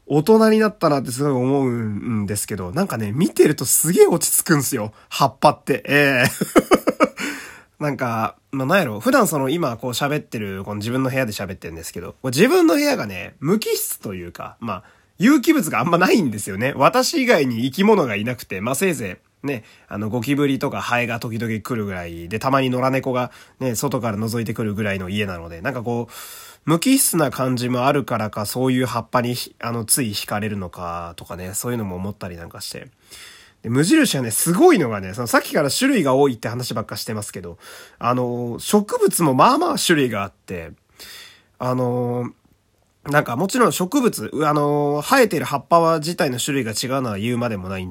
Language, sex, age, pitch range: Japanese, male, 20-39, 110-160 Hz